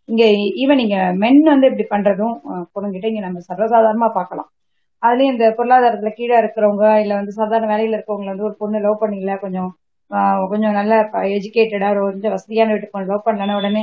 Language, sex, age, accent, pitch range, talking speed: Tamil, female, 20-39, native, 200-240 Hz, 160 wpm